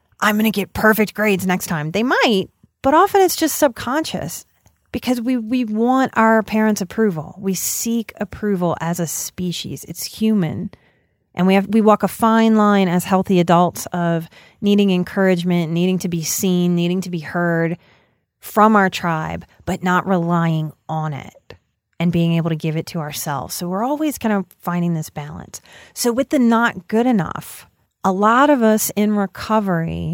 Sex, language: female, English